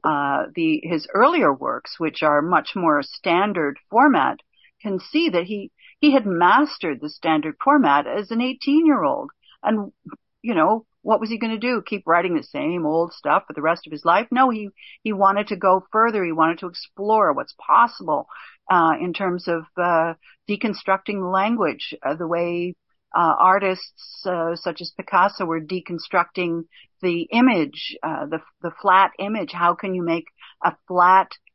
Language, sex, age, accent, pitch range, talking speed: English, female, 50-69, American, 175-235 Hz, 175 wpm